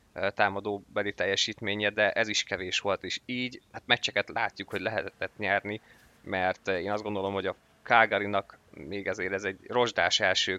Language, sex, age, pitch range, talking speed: Hungarian, male, 20-39, 100-110 Hz, 165 wpm